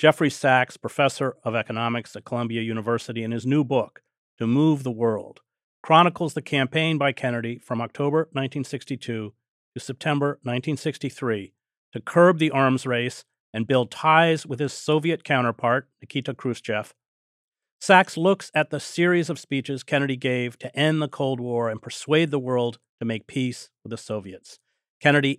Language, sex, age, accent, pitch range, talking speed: English, male, 40-59, American, 120-150 Hz, 155 wpm